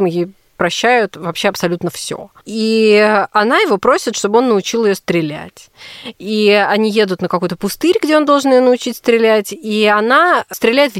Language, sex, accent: Russian, female, native